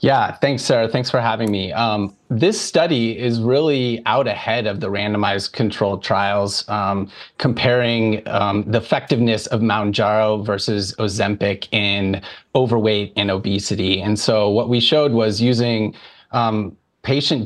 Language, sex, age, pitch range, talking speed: English, male, 30-49, 105-125 Hz, 145 wpm